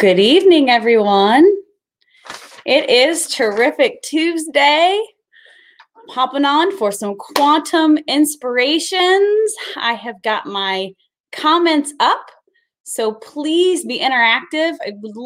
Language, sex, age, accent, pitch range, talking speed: English, female, 20-39, American, 235-350 Hz, 100 wpm